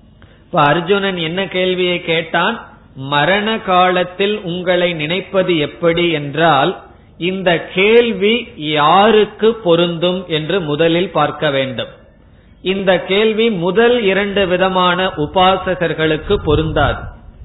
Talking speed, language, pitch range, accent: 60 wpm, Tamil, 150-195 Hz, native